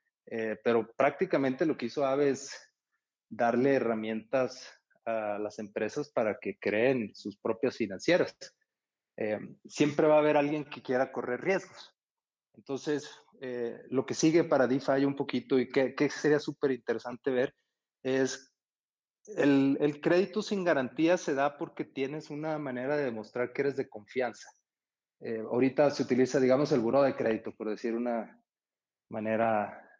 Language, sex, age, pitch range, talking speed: Spanish, male, 30-49, 125-160 Hz, 150 wpm